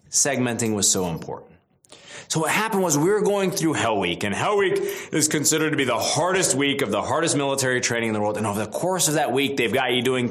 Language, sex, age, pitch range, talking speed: English, male, 20-39, 110-155 Hz, 250 wpm